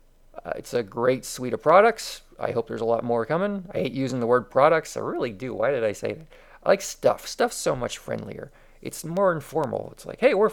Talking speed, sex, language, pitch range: 240 wpm, male, English, 120-170 Hz